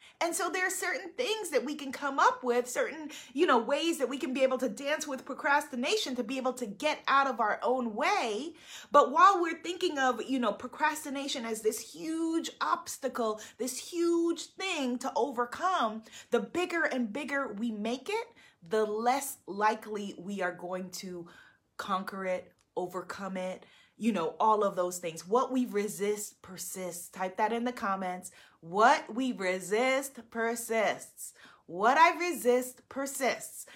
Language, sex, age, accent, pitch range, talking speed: English, female, 30-49, American, 220-315 Hz, 165 wpm